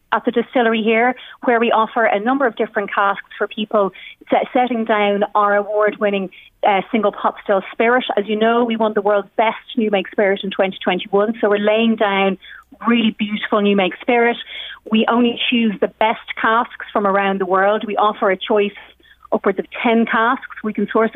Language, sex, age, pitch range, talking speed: English, female, 30-49, 195-225 Hz, 190 wpm